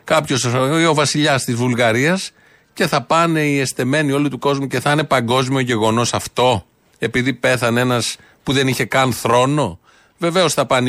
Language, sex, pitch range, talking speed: Greek, male, 115-145 Hz, 165 wpm